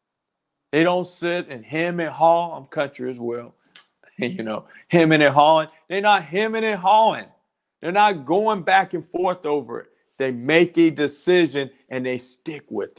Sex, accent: male, American